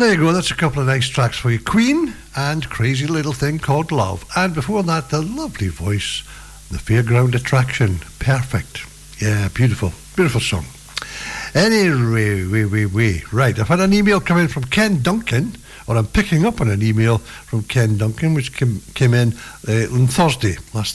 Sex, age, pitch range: male, 60-79, 115-160 Hz